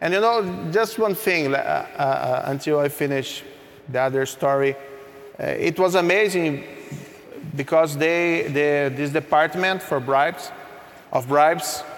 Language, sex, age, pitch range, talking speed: English, male, 40-59, 135-165 Hz, 135 wpm